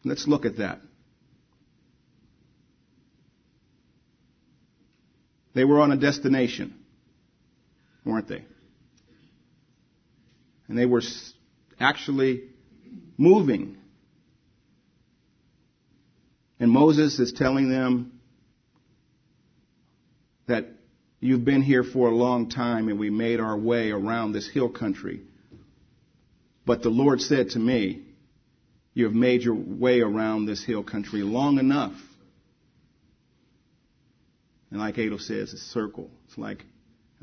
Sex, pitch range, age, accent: male, 105-125 Hz, 50-69, American